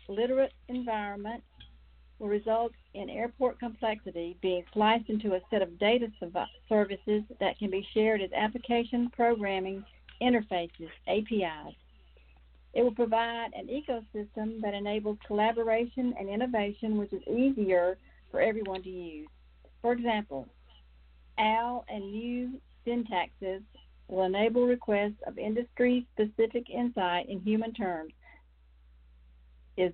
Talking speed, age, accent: 115 wpm, 50-69, American